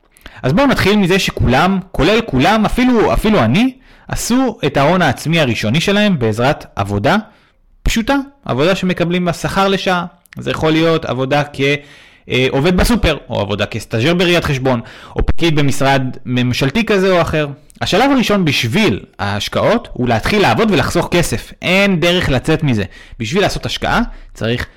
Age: 30-49